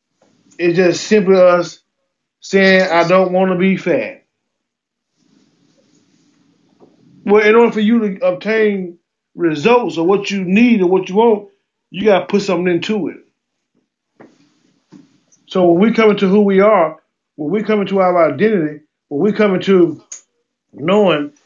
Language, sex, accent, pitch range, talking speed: English, male, American, 185-240 Hz, 145 wpm